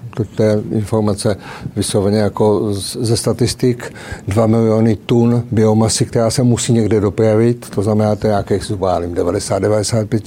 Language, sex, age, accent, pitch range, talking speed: Czech, male, 50-69, native, 110-120 Hz, 130 wpm